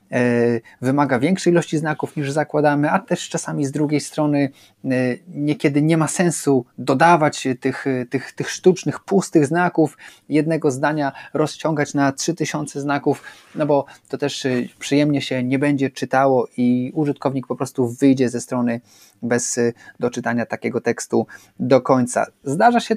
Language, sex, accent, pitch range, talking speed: Polish, male, native, 130-155 Hz, 140 wpm